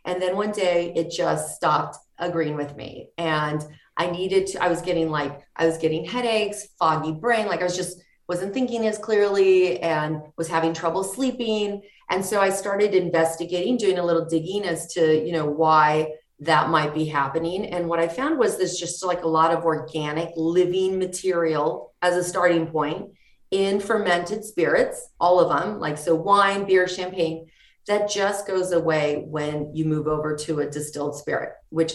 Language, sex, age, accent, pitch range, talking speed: English, female, 30-49, American, 155-195 Hz, 180 wpm